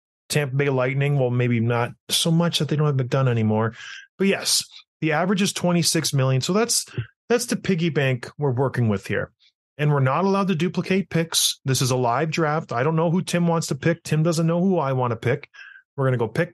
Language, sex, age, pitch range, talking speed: English, male, 20-39, 125-175 Hz, 240 wpm